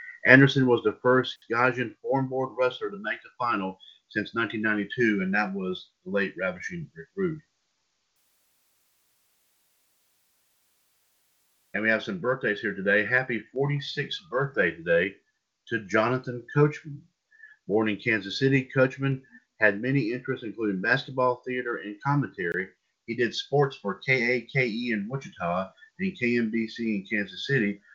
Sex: male